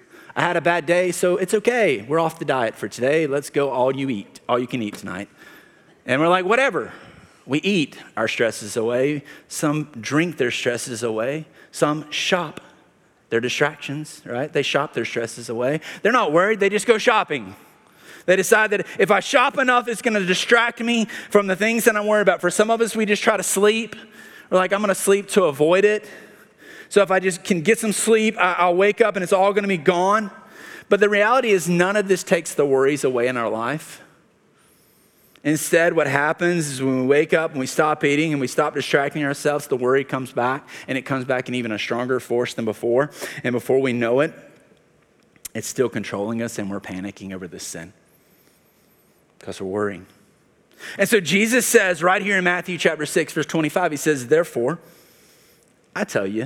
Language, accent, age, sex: English, American, 30-49, male